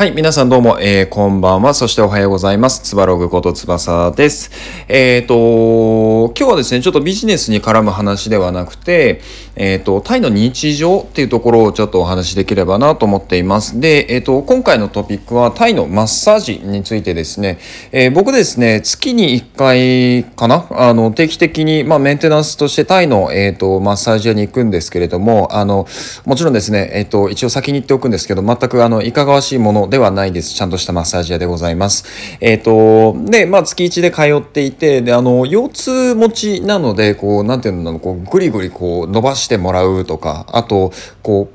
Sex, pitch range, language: male, 100-145 Hz, Japanese